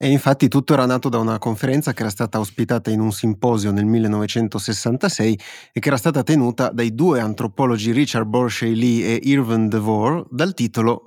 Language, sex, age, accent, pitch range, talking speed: Italian, male, 30-49, native, 110-130 Hz, 175 wpm